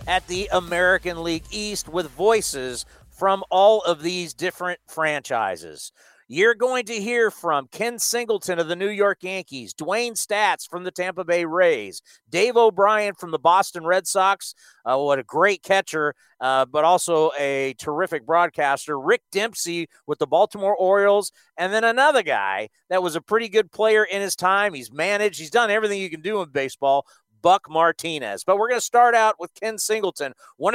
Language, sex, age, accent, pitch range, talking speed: English, male, 40-59, American, 165-210 Hz, 180 wpm